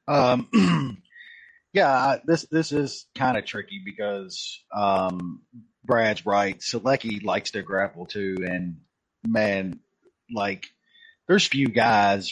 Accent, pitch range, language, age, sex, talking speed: American, 105-160 Hz, English, 30-49, male, 110 wpm